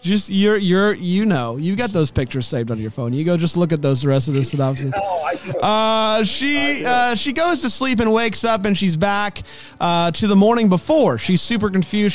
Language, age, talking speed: English, 30-49, 220 wpm